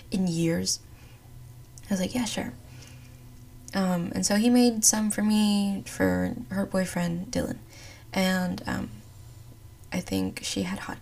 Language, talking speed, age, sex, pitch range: English, 140 wpm, 10-29, female, 110-185 Hz